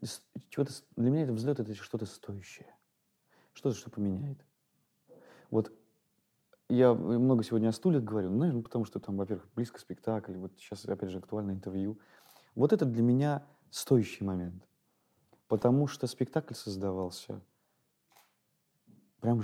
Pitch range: 105-130 Hz